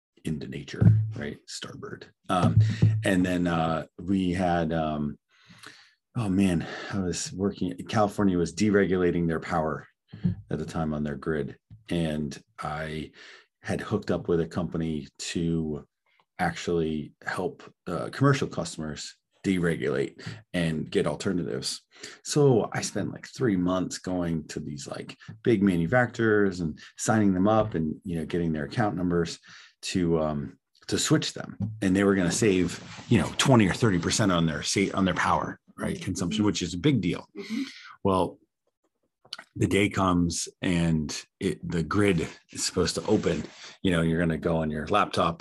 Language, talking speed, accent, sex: English, 150 wpm, American, male